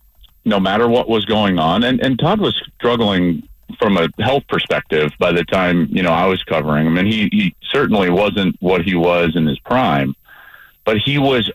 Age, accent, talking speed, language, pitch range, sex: 40-59, American, 195 wpm, English, 85-105 Hz, male